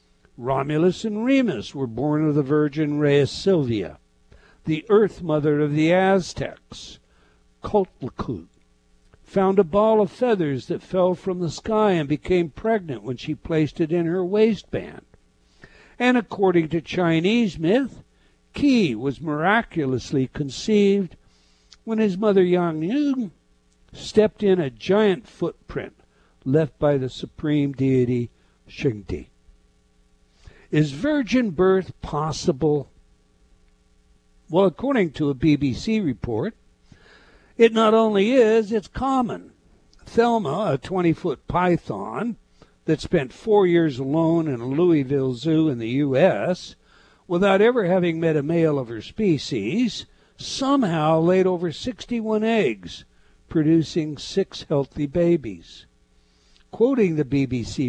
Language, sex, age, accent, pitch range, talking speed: English, male, 60-79, American, 130-200 Hz, 120 wpm